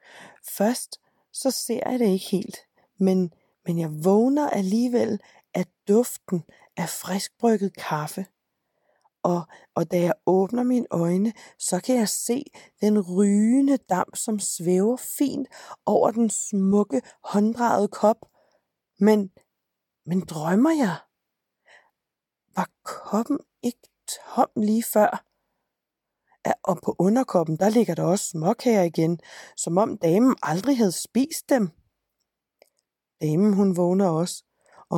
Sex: female